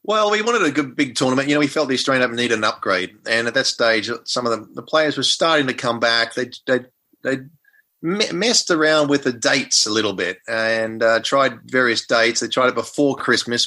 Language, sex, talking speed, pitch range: English, male, 230 wpm, 115-145 Hz